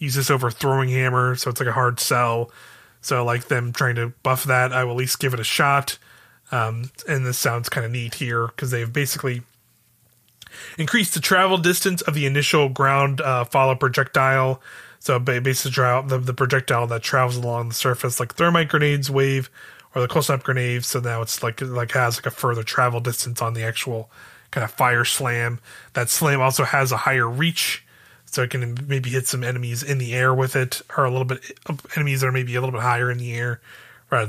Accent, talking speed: American, 210 wpm